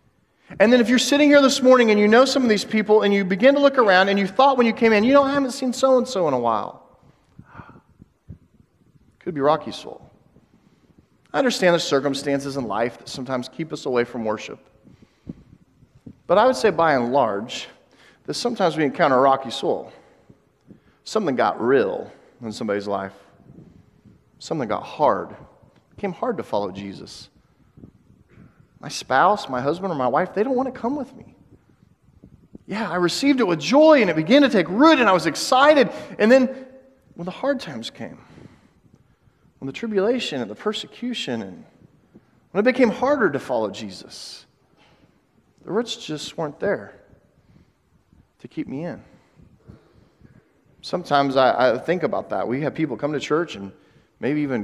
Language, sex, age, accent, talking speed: English, male, 40-59, American, 175 wpm